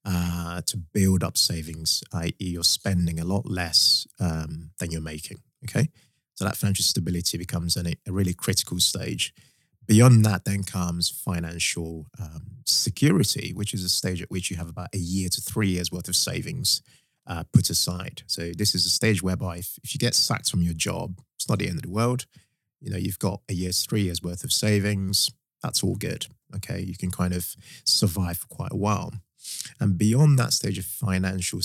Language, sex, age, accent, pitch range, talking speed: English, male, 30-49, British, 90-115 Hz, 200 wpm